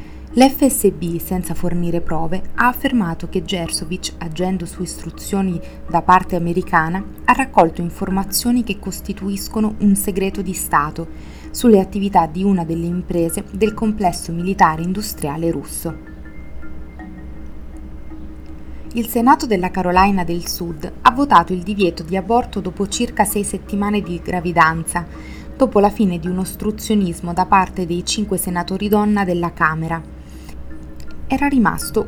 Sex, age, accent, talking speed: female, 20-39, native, 125 wpm